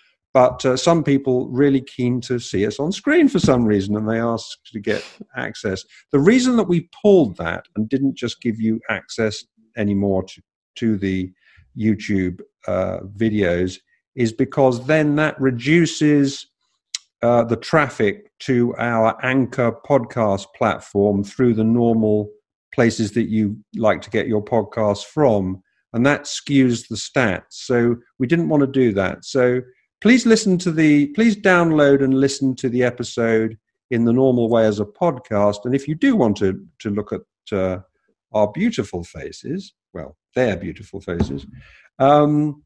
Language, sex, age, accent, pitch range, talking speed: English, male, 50-69, British, 105-140 Hz, 160 wpm